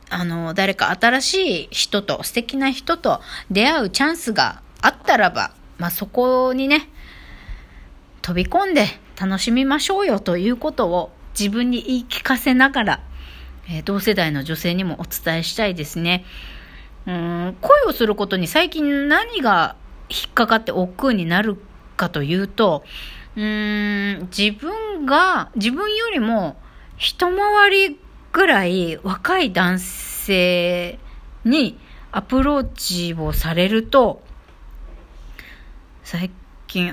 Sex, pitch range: female, 175-265 Hz